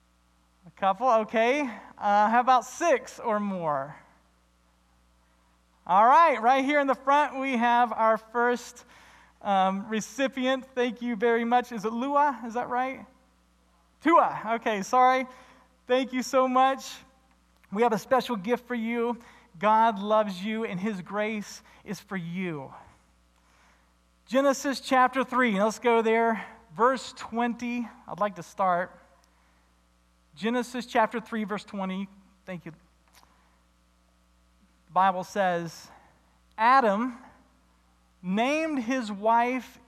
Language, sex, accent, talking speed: English, male, American, 120 wpm